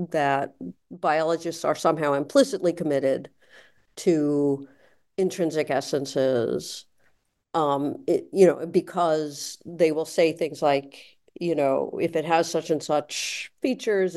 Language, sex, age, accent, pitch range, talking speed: English, female, 50-69, American, 155-205 Hz, 120 wpm